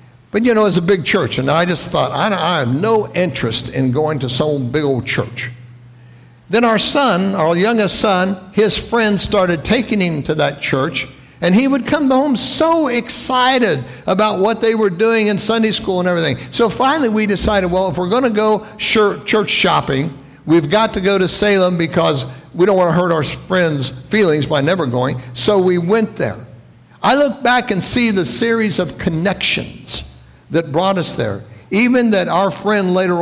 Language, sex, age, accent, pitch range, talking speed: English, male, 60-79, American, 140-210 Hz, 190 wpm